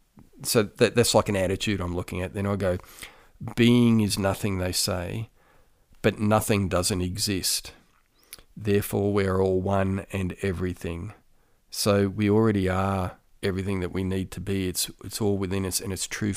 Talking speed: 165 wpm